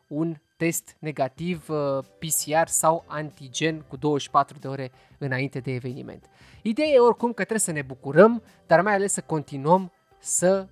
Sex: male